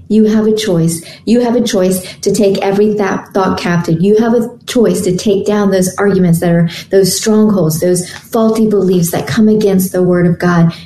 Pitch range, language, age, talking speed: 175-210 Hz, English, 40-59, 200 wpm